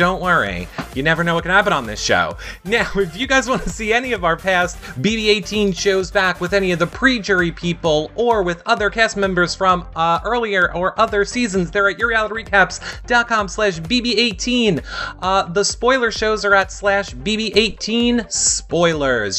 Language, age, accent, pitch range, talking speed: English, 30-49, American, 160-215 Hz, 175 wpm